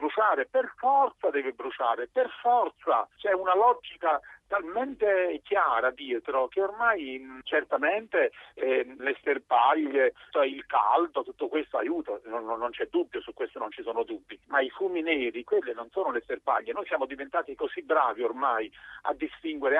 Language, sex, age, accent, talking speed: Italian, male, 50-69, native, 155 wpm